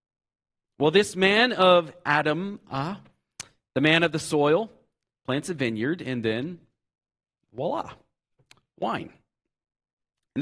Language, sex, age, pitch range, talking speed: English, male, 40-59, 110-150 Hz, 115 wpm